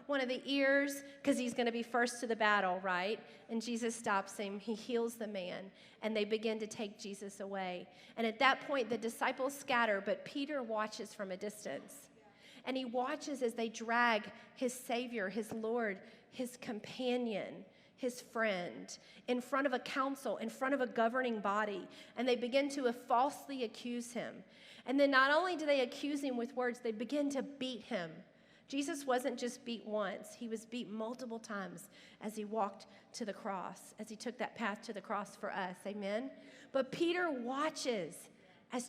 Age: 40-59